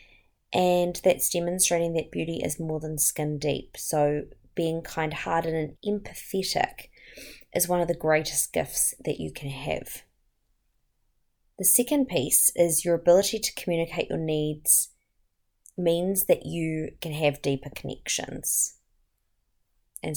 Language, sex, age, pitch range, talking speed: English, female, 20-39, 155-210 Hz, 130 wpm